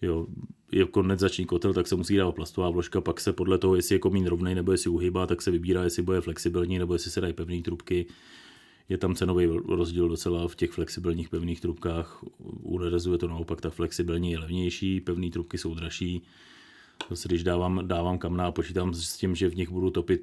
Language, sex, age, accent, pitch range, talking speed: Czech, male, 30-49, native, 85-90 Hz, 200 wpm